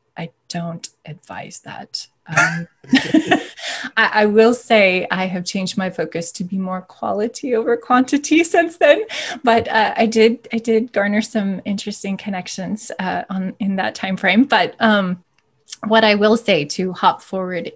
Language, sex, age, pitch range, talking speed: English, female, 20-39, 180-225 Hz, 160 wpm